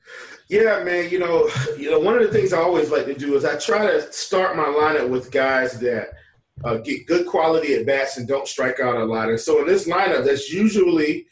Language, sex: English, male